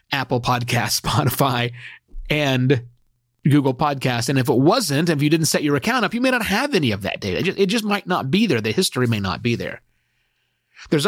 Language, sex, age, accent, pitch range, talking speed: English, male, 30-49, American, 120-185 Hz, 210 wpm